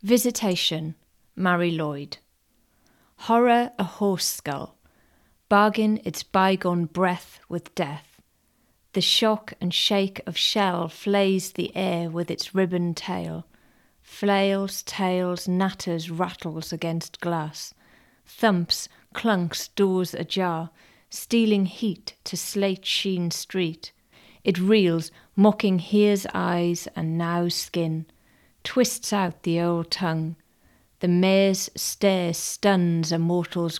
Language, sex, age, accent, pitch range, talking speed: English, female, 30-49, British, 165-195 Hz, 110 wpm